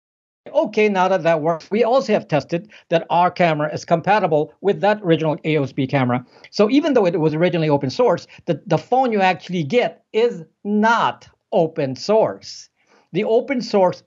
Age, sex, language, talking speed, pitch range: 50-69, male, English, 170 wpm, 145-195 Hz